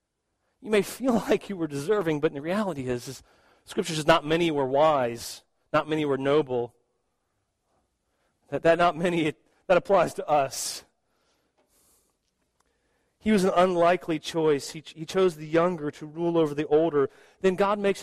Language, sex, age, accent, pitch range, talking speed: English, male, 40-59, American, 160-205 Hz, 165 wpm